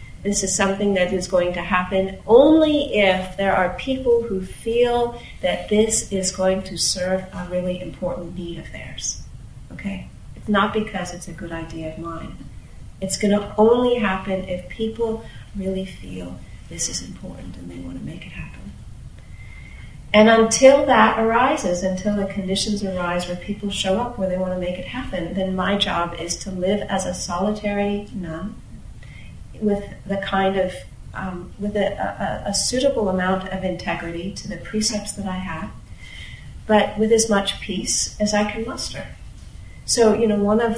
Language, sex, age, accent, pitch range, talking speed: English, female, 40-59, American, 180-210 Hz, 170 wpm